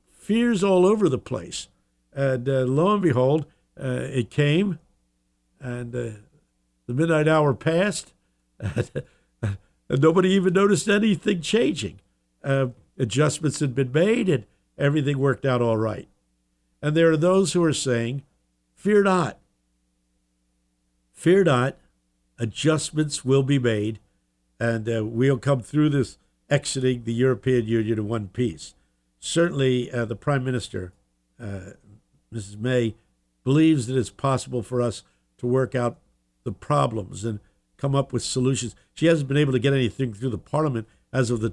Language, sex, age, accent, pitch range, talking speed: English, male, 60-79, American, 90-140 Hz, 145 wpm